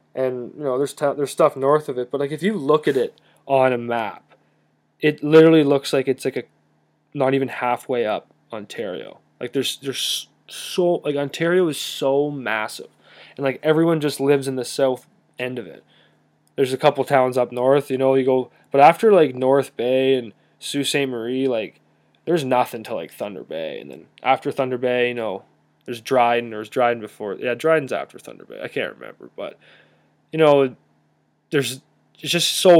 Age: 20-39